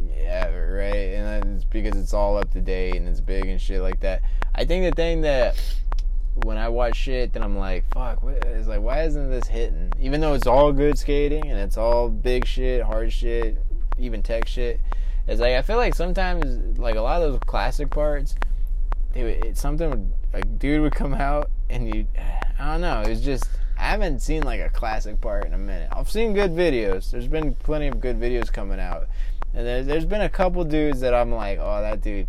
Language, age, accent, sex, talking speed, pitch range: English, 20-39, American, male, 210 wpm, 95-145 Hz